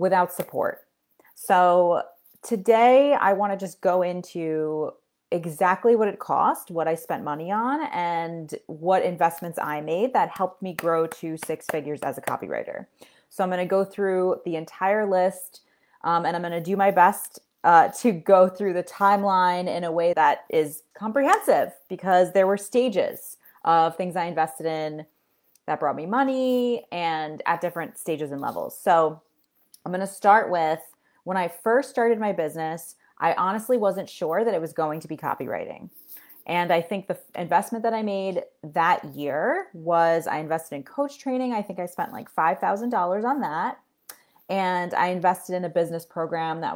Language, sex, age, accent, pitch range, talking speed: English, female, 20-39, American, 165-200 Hz, 175 wpm